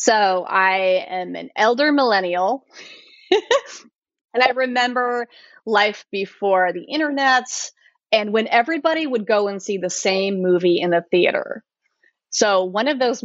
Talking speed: 135 wpm